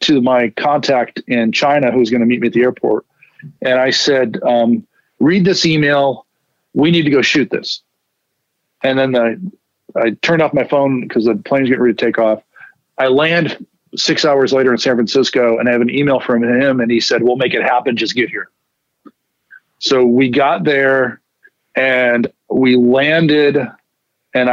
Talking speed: 180 wpm